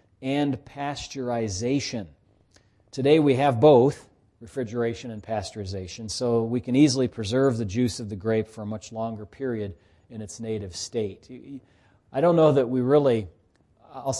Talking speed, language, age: 150 wpm, English, 40-59